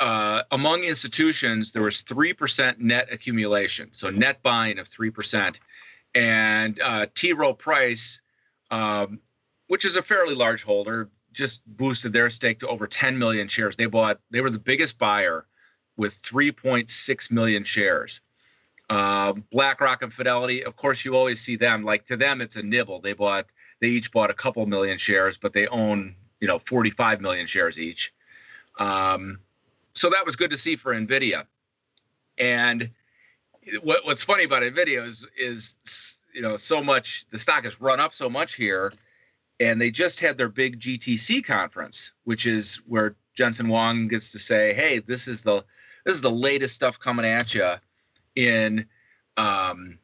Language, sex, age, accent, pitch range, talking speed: English, male, 40-59, American, 105-130 Hz, 170 wpm